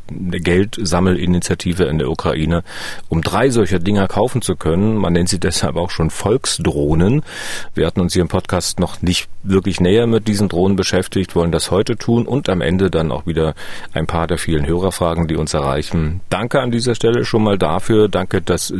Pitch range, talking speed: 80-100 Hz, 190 wpm